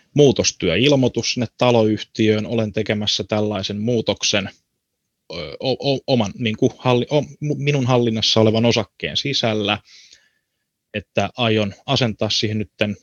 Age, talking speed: 20-39, 105 wpm